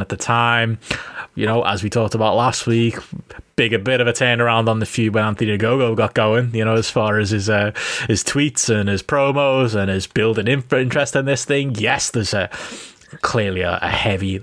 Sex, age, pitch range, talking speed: male, 20-39, 105-130 Hz, 205 wpm